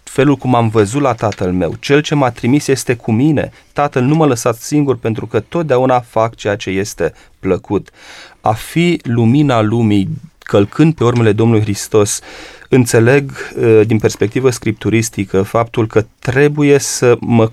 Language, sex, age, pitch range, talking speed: Romanian, male, 30-49, 105-130 Hz, 155 wpm